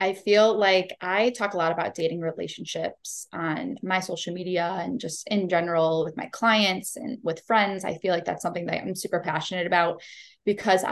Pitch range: 170-210 Hz